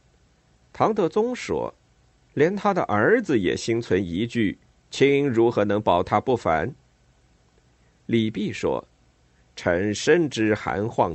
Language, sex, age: Chinese, male, 50-69